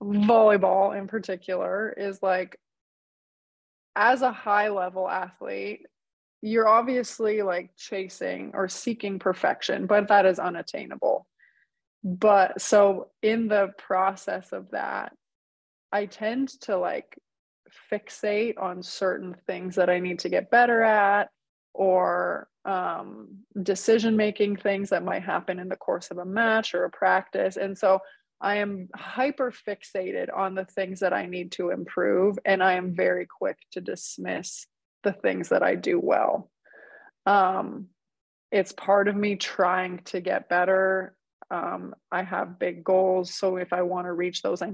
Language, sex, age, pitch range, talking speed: English, female, 20-39, 185-215 Hz, 145 wpm